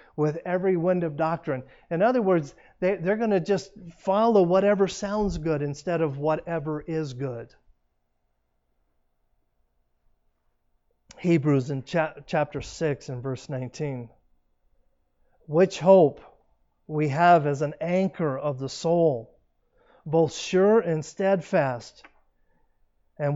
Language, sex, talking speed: English, male, 115 wpm